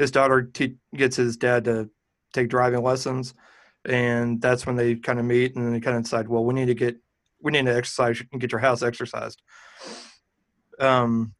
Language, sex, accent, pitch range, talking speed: English, male, American, 120-135 Hz, 195 wpm